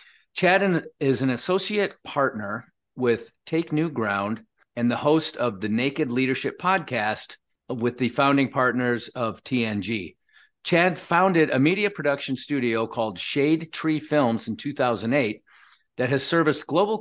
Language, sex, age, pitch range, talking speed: English, male, 50-69, 120-145 Hz, 140 wpm